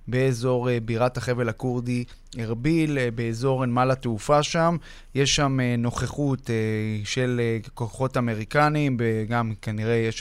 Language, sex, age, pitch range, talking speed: Hebrew, male, 20-39, 120-140 Hz, 105 wpm